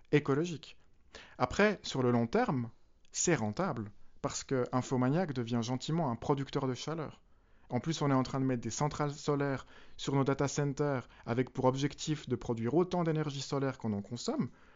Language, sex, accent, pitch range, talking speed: French, male, French, 125-155 Hz, 180 wpm